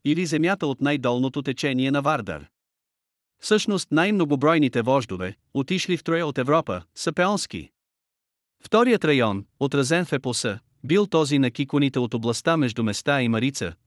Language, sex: Bulgarian, male